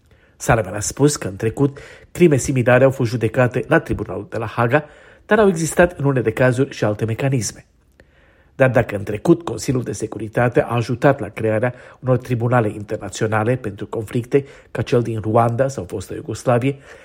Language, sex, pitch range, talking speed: Romanian, male, 110-135 Hz, 175 wpm